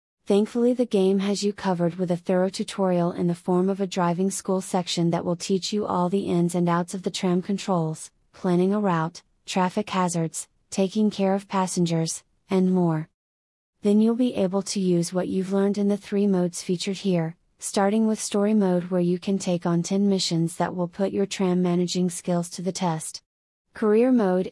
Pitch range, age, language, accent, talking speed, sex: 175-200 Hz, 30-49, English, American, 195 wpm, female